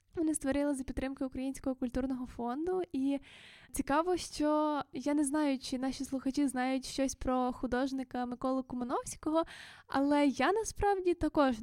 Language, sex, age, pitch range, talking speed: Ukrainian, female, 10-29, 255-310 Hz, 135 wpm